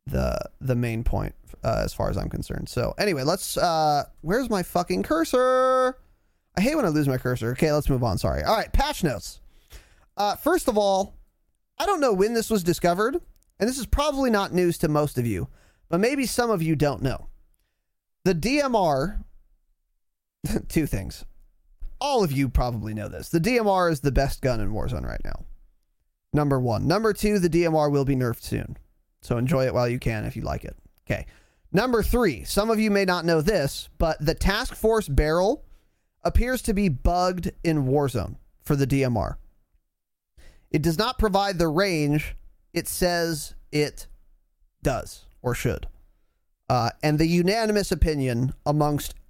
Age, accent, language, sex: 20-39, American, English, male